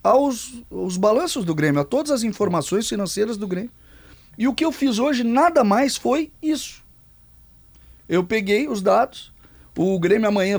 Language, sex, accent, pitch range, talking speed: Portuguese, male, Brazilian, 160-260 Hz, 165 wpm